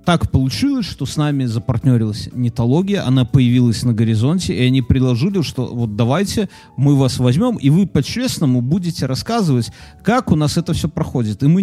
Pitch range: 135-185 Hz